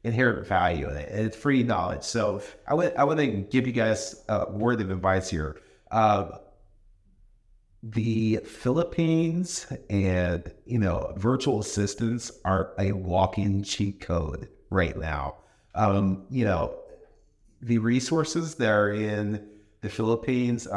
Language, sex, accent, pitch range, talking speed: English, male, American, 100-125 Hz, 135 wpm